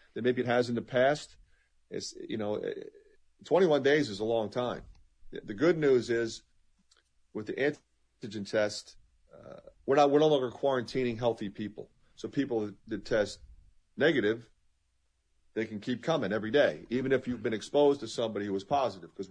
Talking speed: 170 wpm